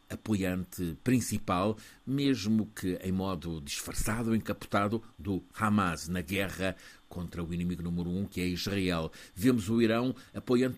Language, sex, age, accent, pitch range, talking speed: Portuguese, male, 60-79, Portuguese, 90-110 Hz, 135 wpm